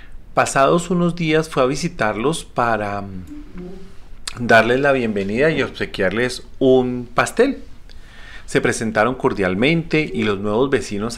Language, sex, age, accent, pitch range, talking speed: Spanish, male, 40-59, Colombian, 95-130 Hz, 115 wpm